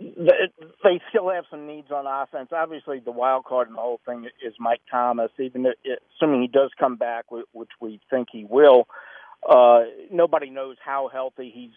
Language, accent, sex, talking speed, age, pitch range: English, American, male, 180 wpm, 50-69, 115-140 Hz